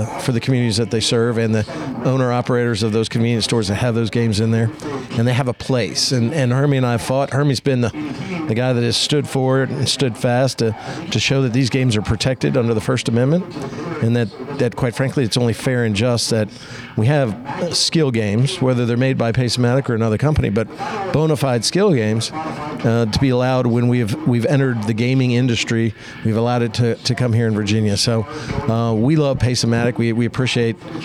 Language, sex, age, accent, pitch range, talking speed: English, male, 50-69, American, 115-135 Hz, 220 wpm